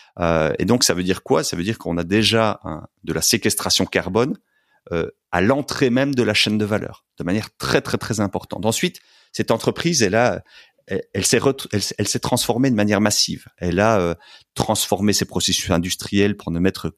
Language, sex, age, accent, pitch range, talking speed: French, male, 40-59, French, 90-110 Hz, 210 wpm